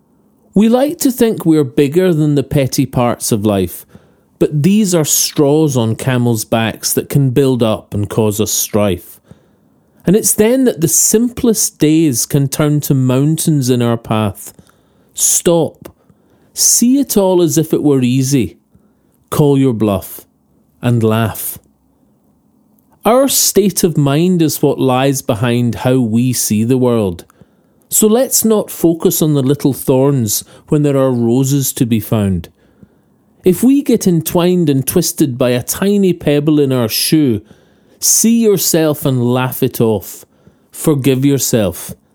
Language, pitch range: English, 125-180 Hz